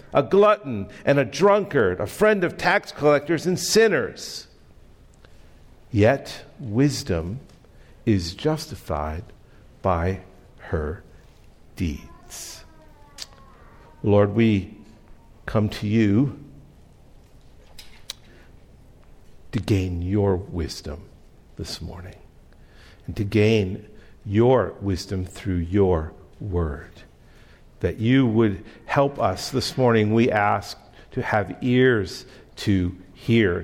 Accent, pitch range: American, 95-130 Hz